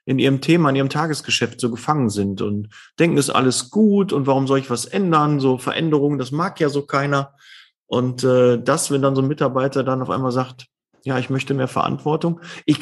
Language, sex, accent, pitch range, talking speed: German, male, German, 130-160 Hz, 210 wpm